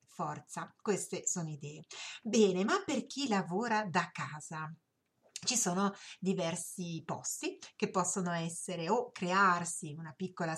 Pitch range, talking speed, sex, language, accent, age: 160-200 Hz, 125 wpm, female, Italian, native, 30-49